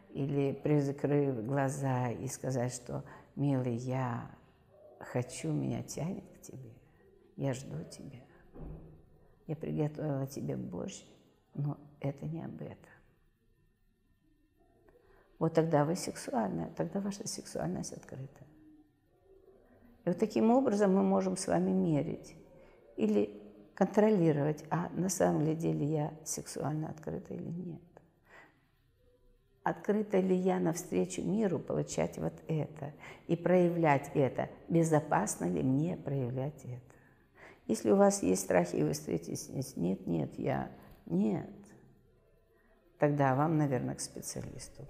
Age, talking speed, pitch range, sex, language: 50-69, 120 wpm, 130-165 Hz, female, Russian